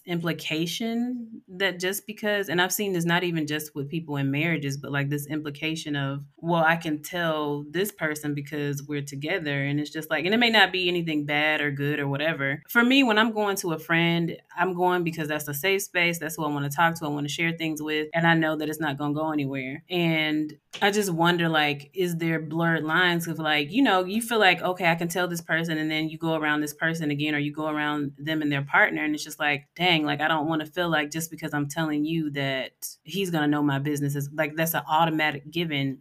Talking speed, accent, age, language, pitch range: 250 wpm, American, 30-49, English, 145-170 Hz